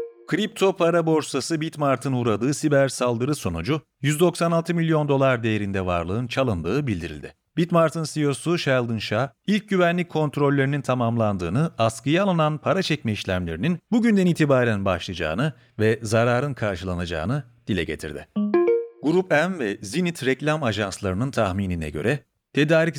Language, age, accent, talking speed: Turkish, 40-59, native, 115 wpm